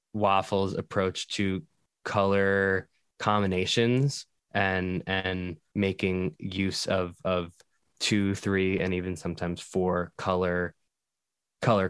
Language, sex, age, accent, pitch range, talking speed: English, male, 20-39, American, 95-110 Hz, 95 wpm